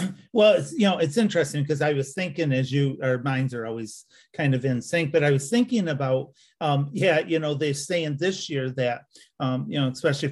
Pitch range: 135-165 Hz